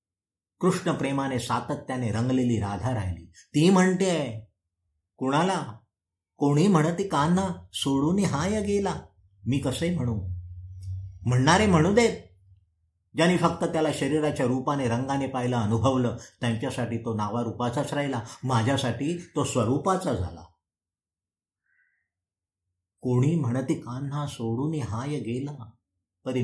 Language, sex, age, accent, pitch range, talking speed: Marathi, male, 50-69, native, 95-145 Hz, 75 wpm